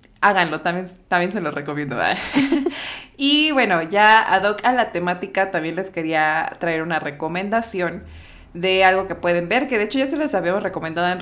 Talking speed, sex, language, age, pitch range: 180 wpm, female, Spanish, 20-39, 165-215 Hz